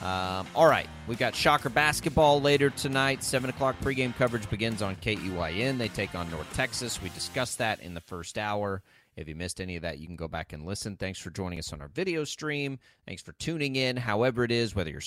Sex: male